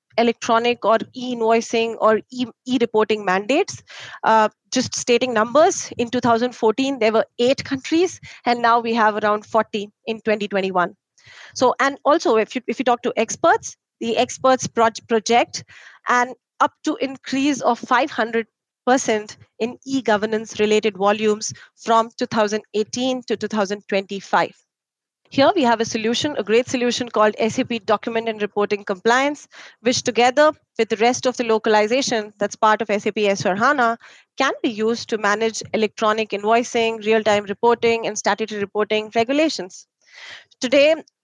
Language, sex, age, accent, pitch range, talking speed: English, female, 30-49, Indian, 215-255 Hz, 140 wpm